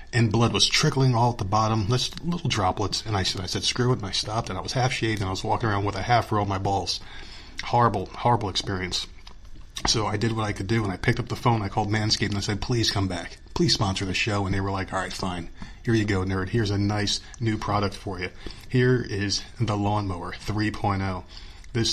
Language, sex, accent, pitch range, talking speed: English, male, American, 95-115 Hz, 245 wpm